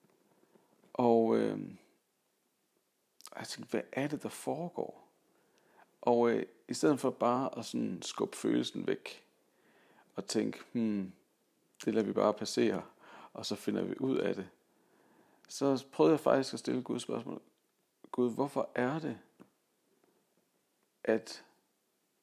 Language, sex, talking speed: Danish, male, 130 wpm